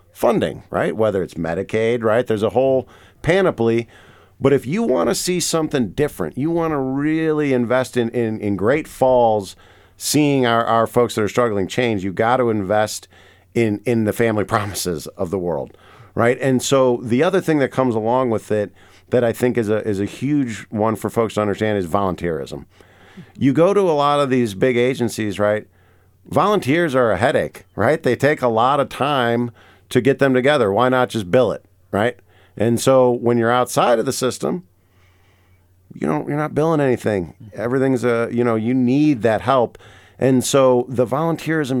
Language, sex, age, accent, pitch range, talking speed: English, male, 50-69, American, 105-135 Hz, 190 wpm